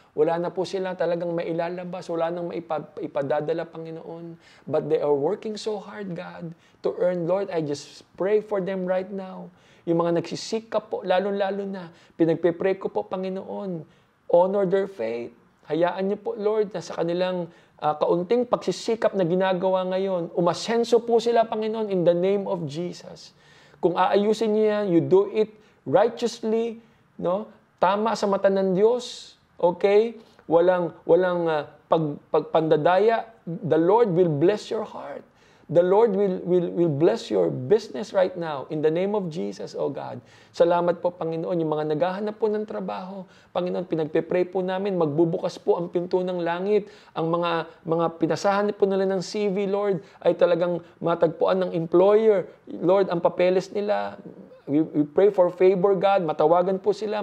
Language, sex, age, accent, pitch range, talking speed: Filipino, male, 20-39, native, 170-200 Hz, 160 wpm